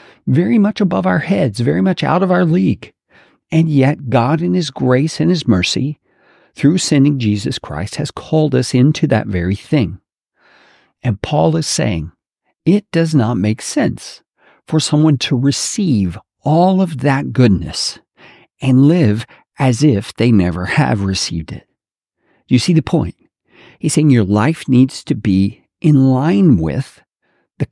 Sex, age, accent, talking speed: male, 50-69, American, 160 wpm